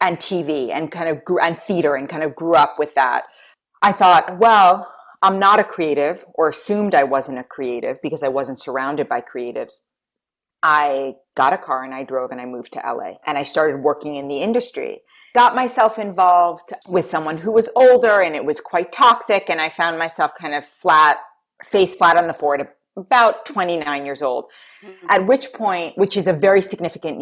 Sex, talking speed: female, 200 wpm